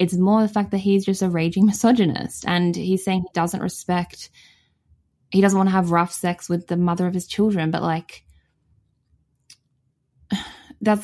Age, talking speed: 10-29, 175 wpm